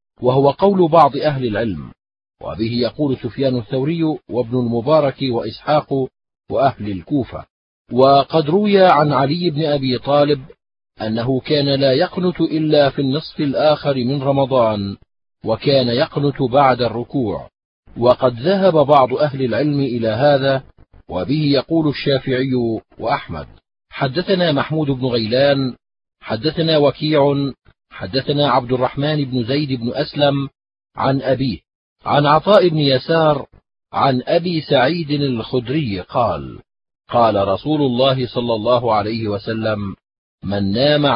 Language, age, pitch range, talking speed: Arabic, 40-59, 125-150 Hz, 115 wpm